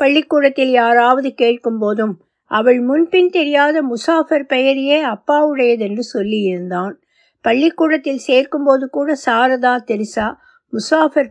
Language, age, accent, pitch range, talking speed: Tamil, 60-79, native, 220-300 Hz, 95 wpm